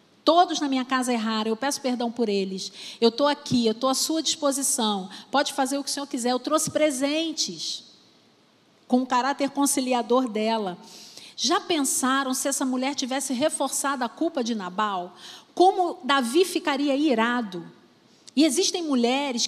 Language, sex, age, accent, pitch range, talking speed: Portuguese, female, 40-59, Brazilian, 230-300 Hz, 155 wpm